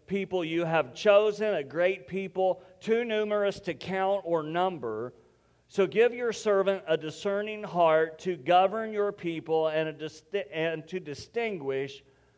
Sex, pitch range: male, 150-185 Hz